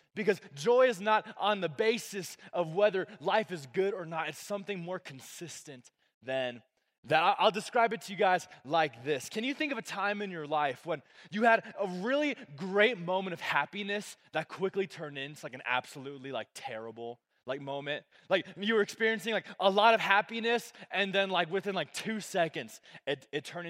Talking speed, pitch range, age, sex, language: 190 wpm, 145-205 Hz, 20-39, male, English